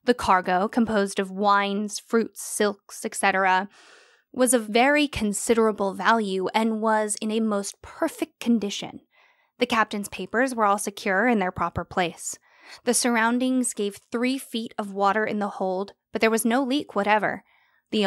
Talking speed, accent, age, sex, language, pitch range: 155 wpm, American, 10-29, female, English, 200-240 Hz